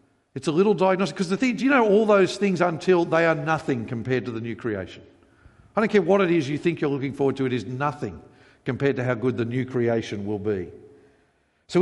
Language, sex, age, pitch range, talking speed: English, male, 50-69, 120-165 Hz, 240 wpm